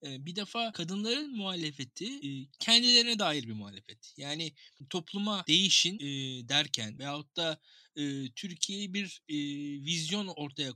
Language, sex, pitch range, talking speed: Turkish, male, 140-200 Hz, 100 wpm